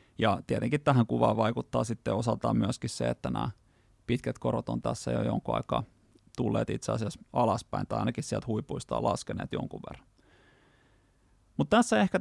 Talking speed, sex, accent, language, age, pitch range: 155 wpm, male, native, Finnish, 30-49, 110-130 Hz